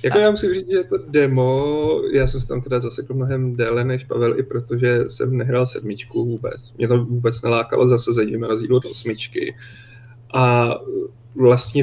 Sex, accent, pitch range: male, native, 120-135 Hz